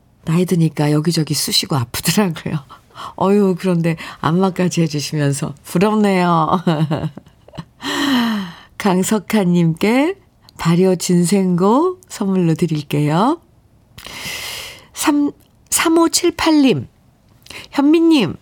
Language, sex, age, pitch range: Korean, female, 40-59, 170-235 Hz